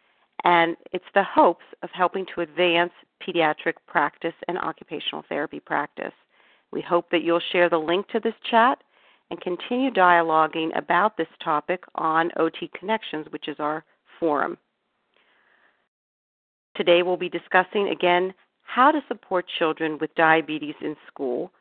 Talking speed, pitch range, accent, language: 140 wpm, 160-190 Hz, American, English